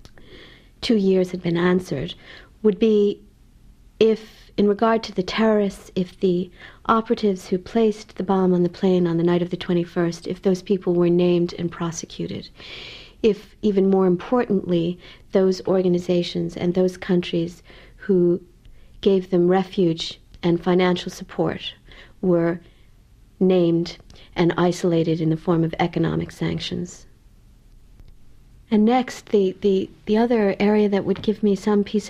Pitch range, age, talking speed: 180-210 Hz, 60-79, 140 wpm